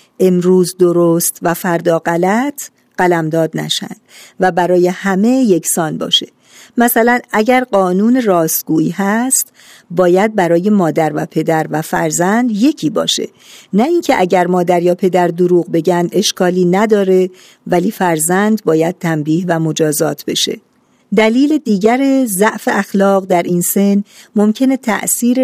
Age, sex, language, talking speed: 50-69, female, Persian, 125 wpm